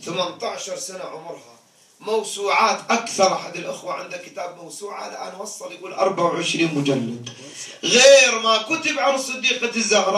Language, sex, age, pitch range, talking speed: English, male, 30-49, 190-255 Hz, 125 wpm